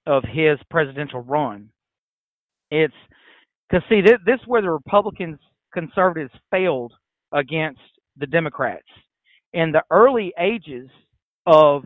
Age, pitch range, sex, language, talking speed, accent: 40-59, 140-195 Hz, male, English, 120 wpm, American